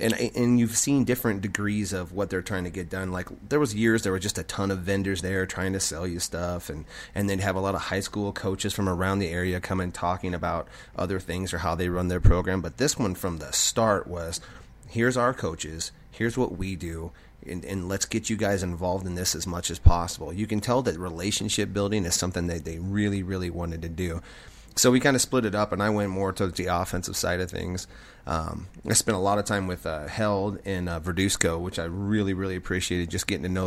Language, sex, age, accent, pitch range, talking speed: English, male, 30-49, American, 90-105 Hz, 245 wpm